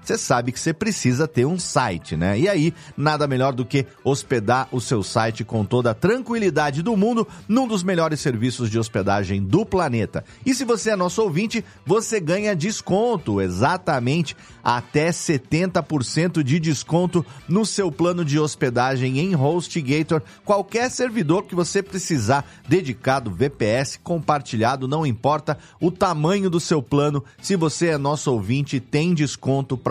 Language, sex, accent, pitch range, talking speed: Portuguese, male, Brazilian, 130-185 Hz, 155 wpm